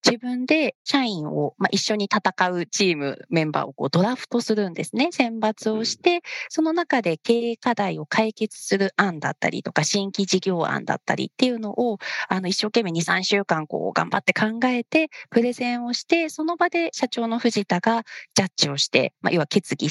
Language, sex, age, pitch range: Japanese, female, 40-59, 165-250 Hz